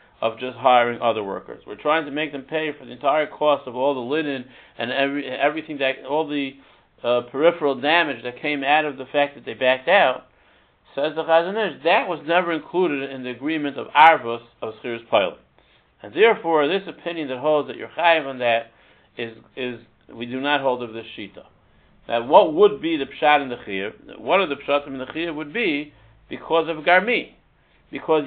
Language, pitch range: English, 125-155 Hz